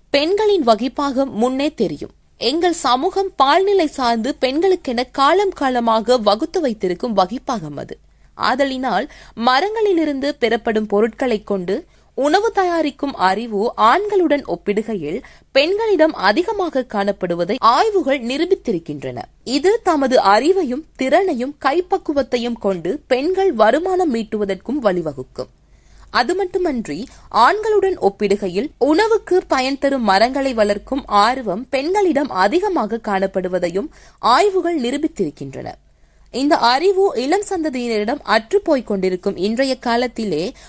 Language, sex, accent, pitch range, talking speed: Tamil, female, native, 215-335 Hz, 90 wpm